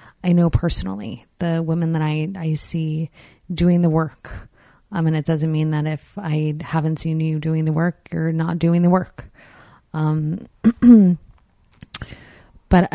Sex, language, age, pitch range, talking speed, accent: female, English, 30-49, 160-180 Hz, 155 wpm, American